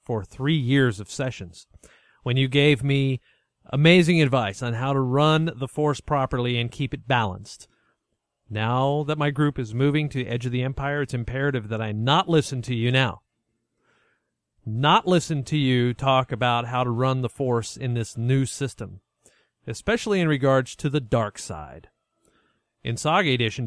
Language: English